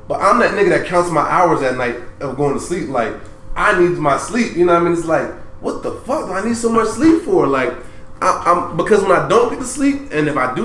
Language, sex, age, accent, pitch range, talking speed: English, male, 20-39, American, 125-180 Hz, 280 wpm